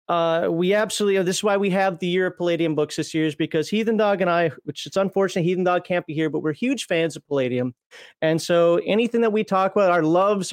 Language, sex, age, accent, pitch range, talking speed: English, male, 30-49, American, 150-195 Hz, 255 wpm